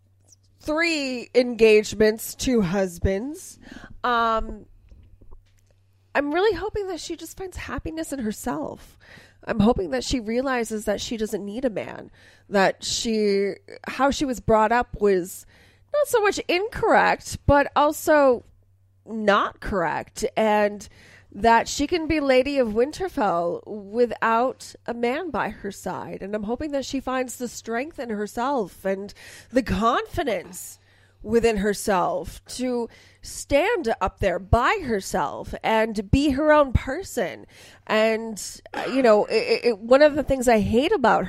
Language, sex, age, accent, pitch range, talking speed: English, female, 20-39, American, 205-280 Hz, 135 wpm